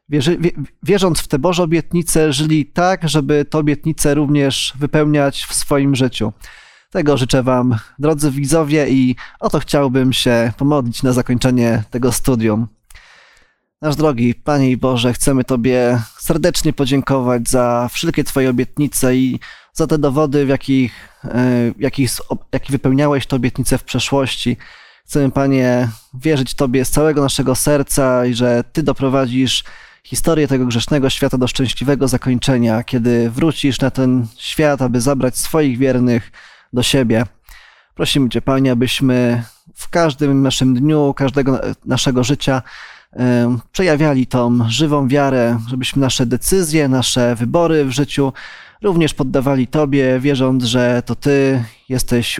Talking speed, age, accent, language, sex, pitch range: 135 wpm, 20-39, native, Polish, male, 125-145 Hz